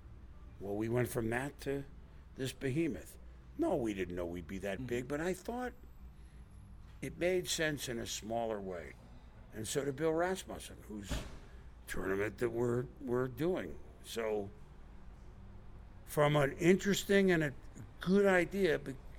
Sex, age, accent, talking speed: male, 60-79, American, 140 wpm